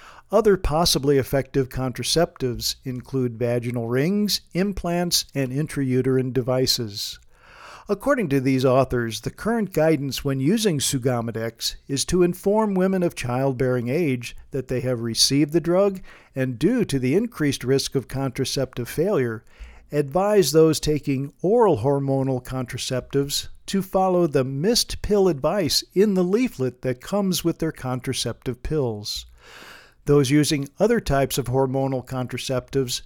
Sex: male